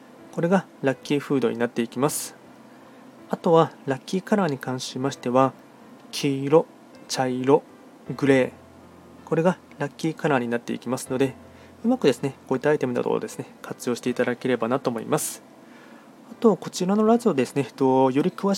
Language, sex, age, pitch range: Japanese, male, 20-39, 130-190 Hz